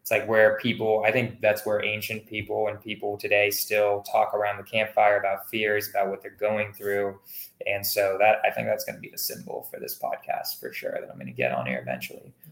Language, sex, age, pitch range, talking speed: English, male, 20-39, 105-120 Hz, 235 wpm